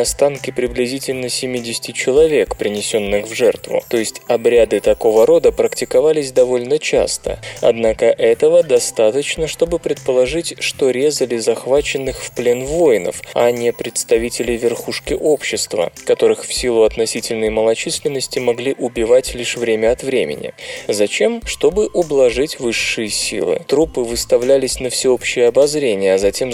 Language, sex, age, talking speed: Russian, male, 20-39, 120 wpm